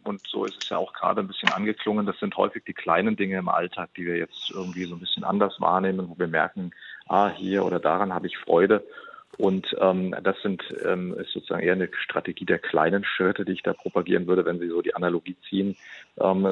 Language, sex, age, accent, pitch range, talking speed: German, male, 40-59, German, 90-105 Hz, 220 wpm